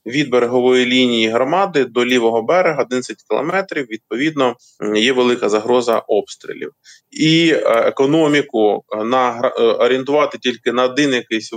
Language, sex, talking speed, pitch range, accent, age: Ukrainian, male, 115 wpm, 115-150 Hz, native, 20-39